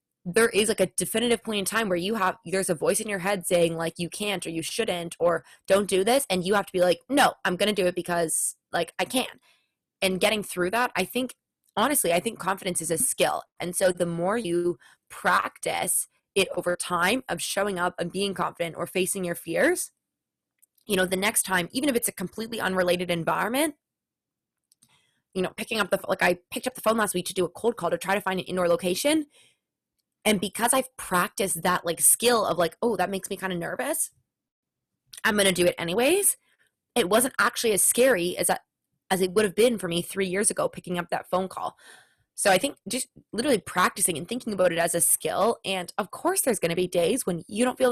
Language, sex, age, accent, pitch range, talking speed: English, female, 20-39, American, 175-220 Hz, 230 wpm